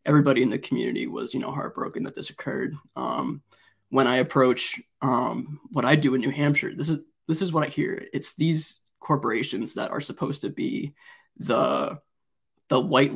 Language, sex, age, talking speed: English, male, 20-39, 185 wpm